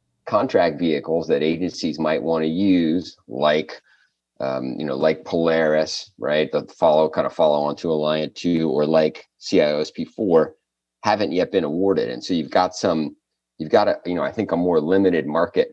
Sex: male